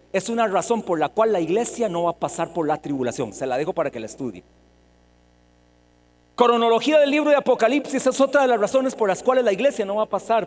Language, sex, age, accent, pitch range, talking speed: Spanish, male, 40-59, Mexican, 185-260 Hz, 235 wpm